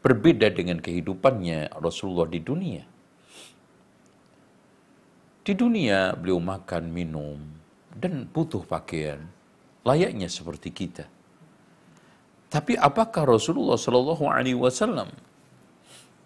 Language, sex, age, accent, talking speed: Indonesian, male, 50-69, native, 85 wpm